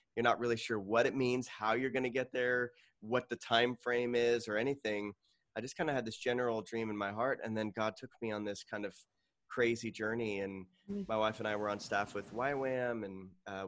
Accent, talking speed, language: American, 235 wpm, English